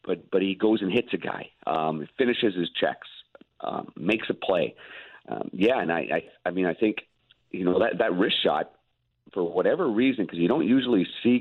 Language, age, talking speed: English, 50-69, 205 wpm